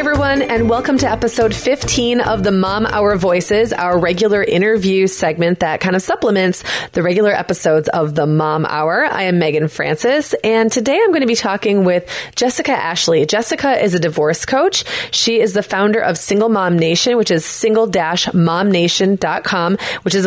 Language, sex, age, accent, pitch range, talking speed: English, female, 20-39, American, 165-215 Hz, 175 wpm